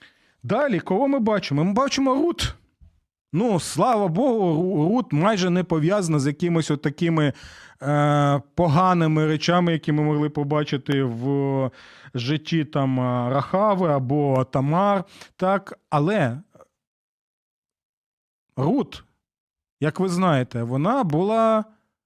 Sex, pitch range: male, 145-190 Hz